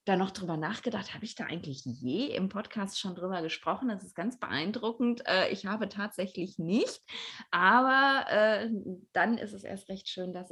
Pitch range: 170-210 Hz